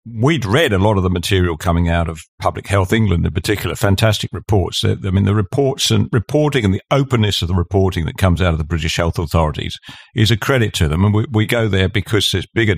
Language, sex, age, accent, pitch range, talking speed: English, male, 50-69, British, 95-125 Hz, 235 wpm